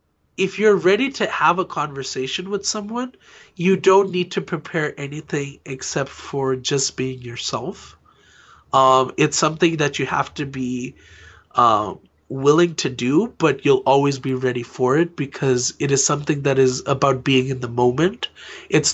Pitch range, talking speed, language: 130-170 Hz, 160 wpm, English